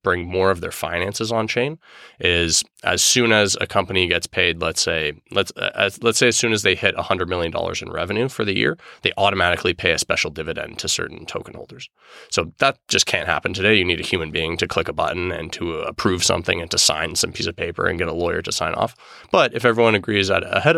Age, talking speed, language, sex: 20-39, 235 wpm, English, male